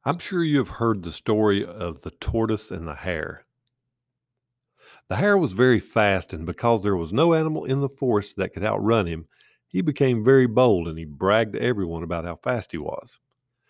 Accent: American